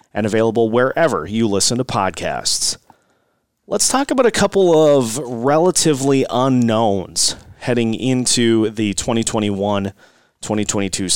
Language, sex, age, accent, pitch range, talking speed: English, male, 30-49, American, 100-125 Hz, 100 wpm